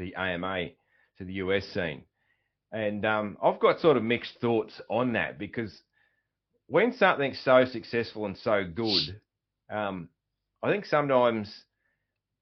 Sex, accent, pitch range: male, Australian, 100-125 Hz